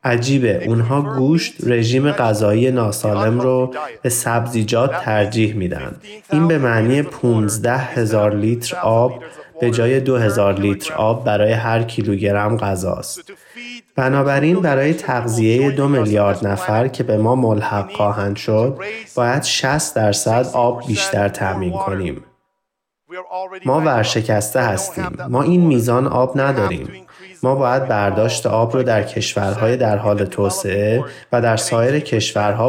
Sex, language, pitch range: male, Persian, 105-130 Hz